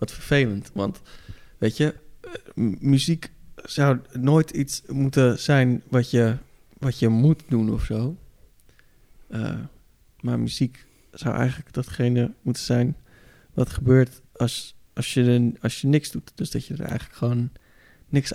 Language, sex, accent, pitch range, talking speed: Dutch, male, Dutch, 115-145 Hz, 140 wpm